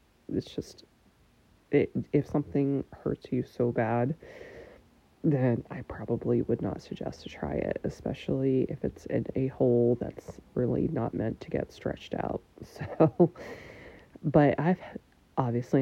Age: 30-49